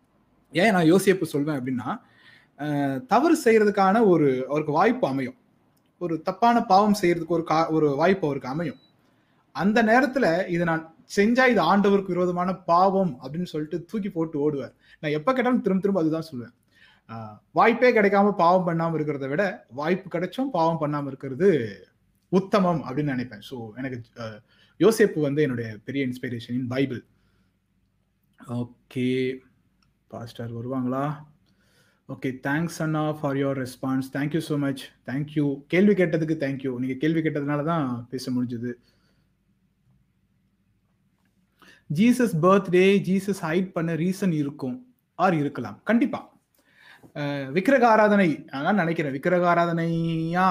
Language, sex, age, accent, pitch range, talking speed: Tamil, male, 30-49, native, 135-185 Hz, 115 wpm